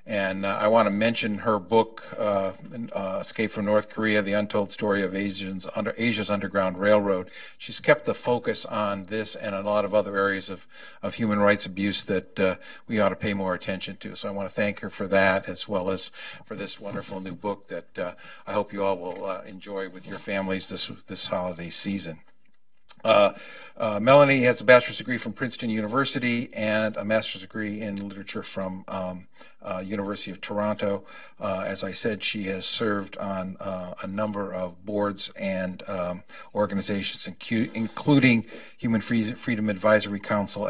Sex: male